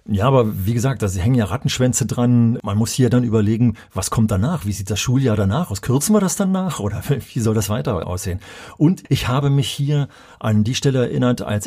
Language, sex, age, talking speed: German, male, 40-59, 220 wpm